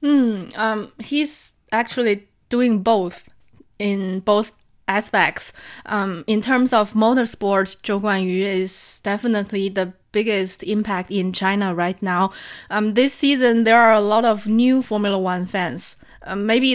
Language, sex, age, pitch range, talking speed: English, female, 20-39, 190-220 Hz, 140 wpm